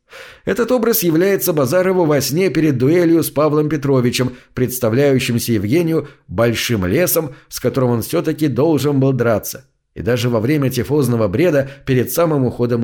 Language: Russian